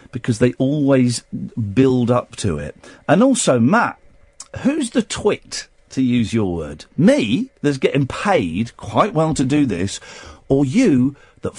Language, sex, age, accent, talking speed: English, male, 50-69, British, 150 wpm